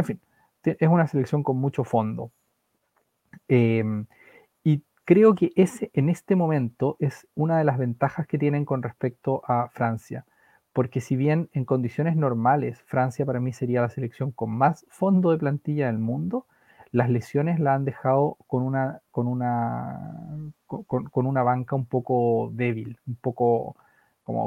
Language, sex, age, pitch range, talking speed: Spanish, male, 30-49, 120-140 Hz, 160 wpm